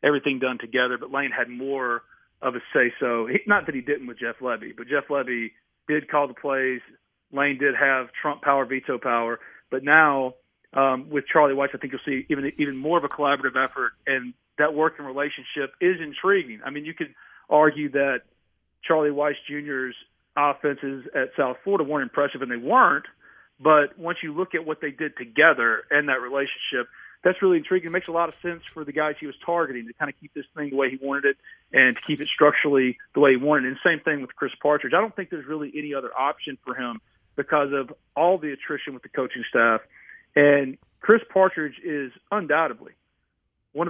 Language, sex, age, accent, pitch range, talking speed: English, male, 40-59, American, 135-160 Hz, 210 wpm